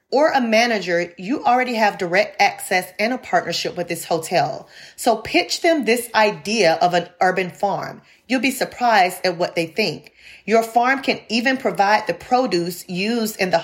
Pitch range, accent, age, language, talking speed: 180-235 Hz, American, 30-49, English, 175 wpm